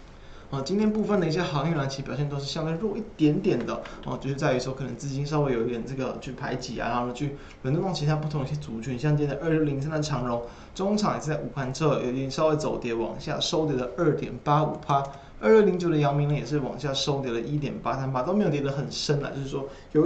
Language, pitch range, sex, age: Chinese, 135-160 Hz, male, 20-39